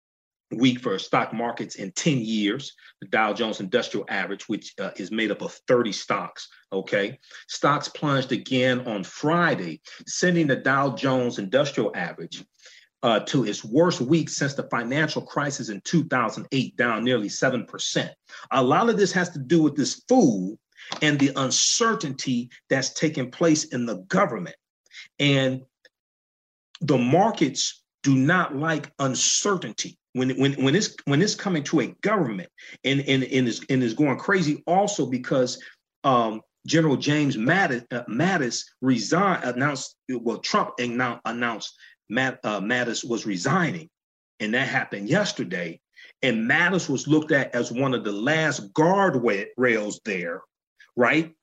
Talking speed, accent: 145 wpm, American